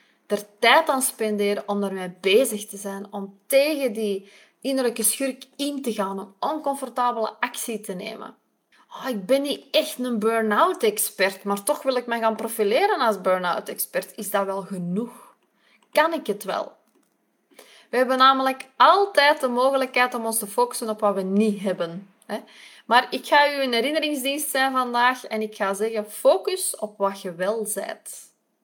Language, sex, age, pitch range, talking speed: Dutch, female, 20-39, 205-270 Hz, 170 wpm